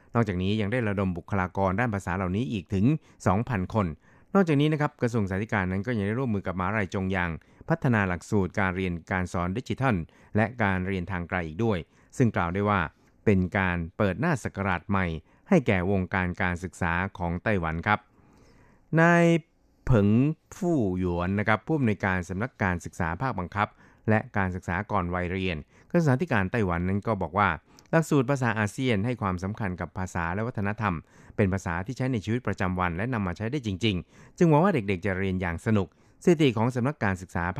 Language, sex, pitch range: Thai, male, 95-115 Hz